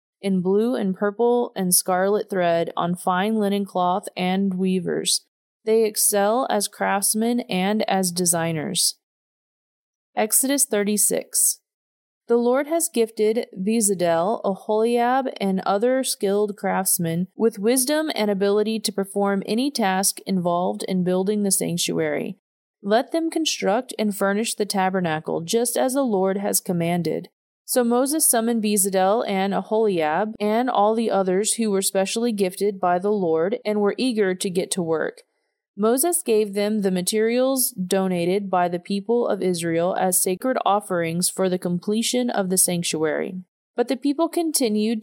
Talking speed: 140 wpm